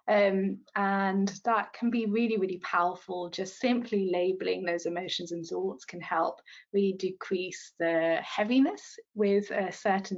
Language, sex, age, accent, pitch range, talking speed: English, female, 20-39, British, 175-215 Hz, 140 wpm